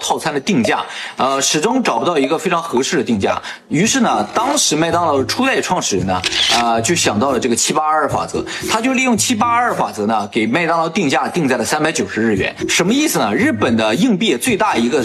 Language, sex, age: Chinese, male, 20-39